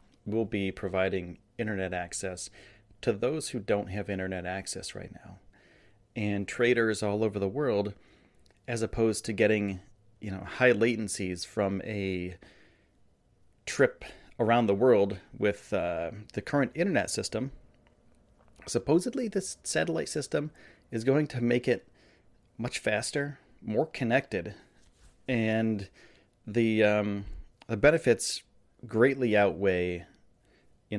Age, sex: 30-49, male